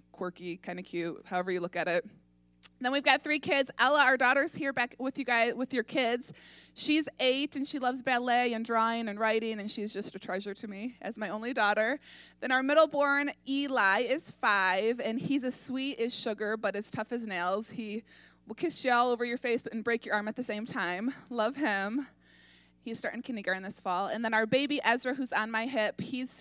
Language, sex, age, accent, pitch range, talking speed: English, female, 20-39, American, 215-255 Hz, 220 wpm